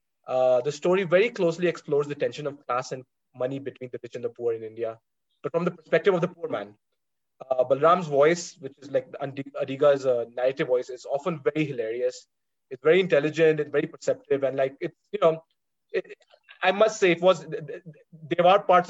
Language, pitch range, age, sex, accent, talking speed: English, 130-170 Hz, 20-39, male, Indian, 200 wpm